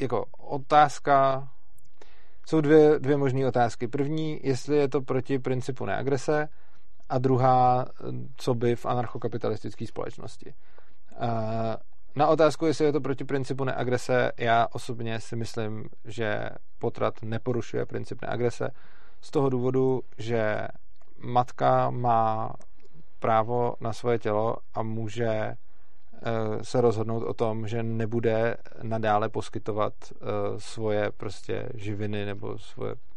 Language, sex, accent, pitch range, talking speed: Czech, male, native, 115-135 Hz, 115 wpm